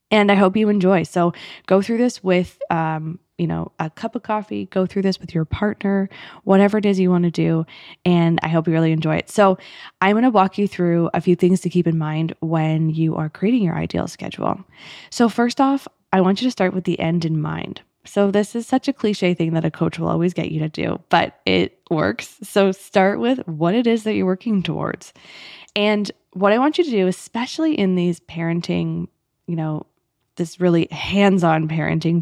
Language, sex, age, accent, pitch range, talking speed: English, female, 20-39, American, 165-205 Hz, 215 wpm